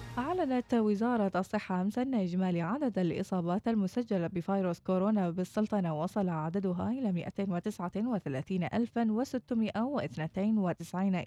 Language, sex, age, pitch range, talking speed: Arabic, female, 20-39, 170-210 Hz, 80 wpm